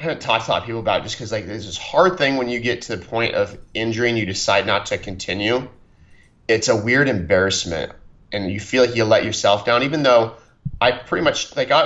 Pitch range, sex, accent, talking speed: 105-125 Hz, male, American, 255 wpm